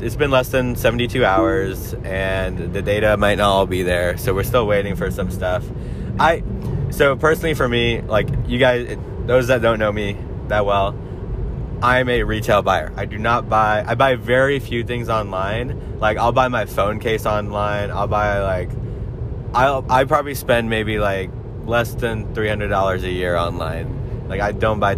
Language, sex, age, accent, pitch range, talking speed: English, male, 20-39, American, 95-120 Hz, 185 wpm